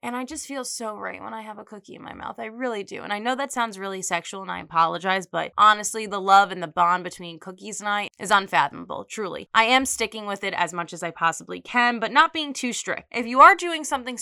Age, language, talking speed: 20-39, English, 260 wpm